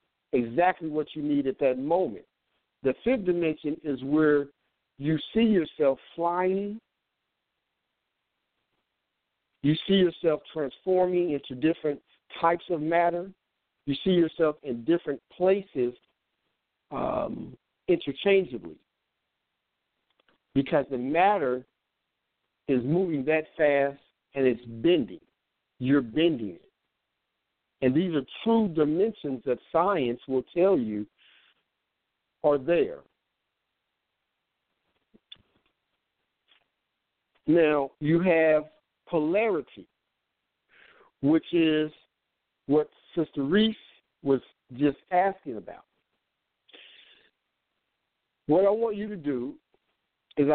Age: 60-79